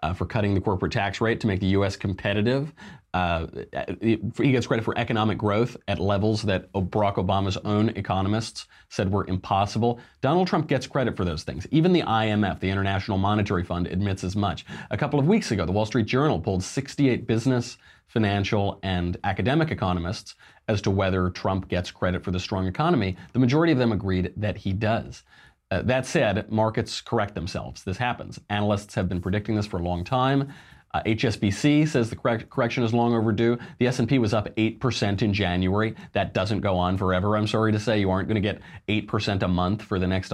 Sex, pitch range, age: male, 95-120 Hz, 30-49